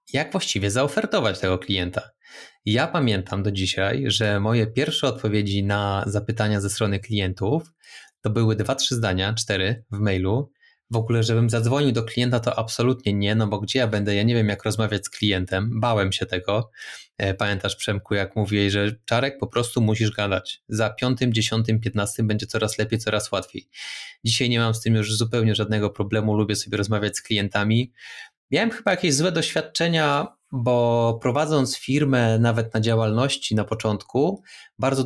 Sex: male